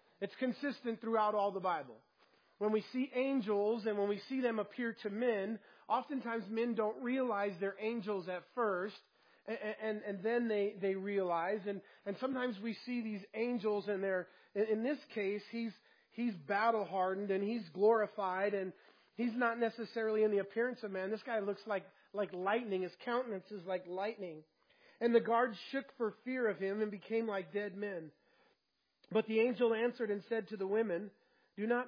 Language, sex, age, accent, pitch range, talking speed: English, male, 40-59, American, 200-230 Hz, 180 wpm